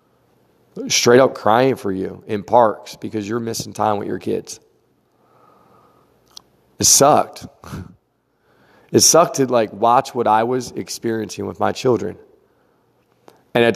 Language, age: English, 40-59